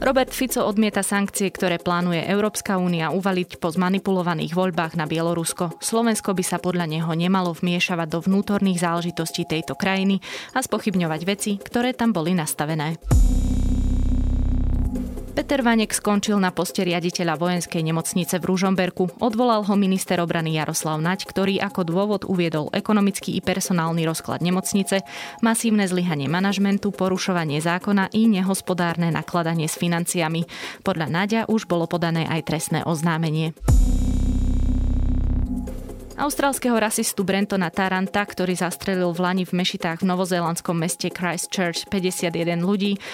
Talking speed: 130 wpm